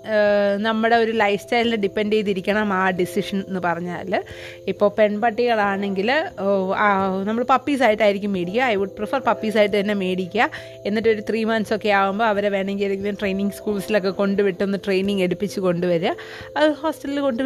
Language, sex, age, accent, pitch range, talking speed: Malayalam, female, 30-49, native, 200-240 Hz, 135 wpm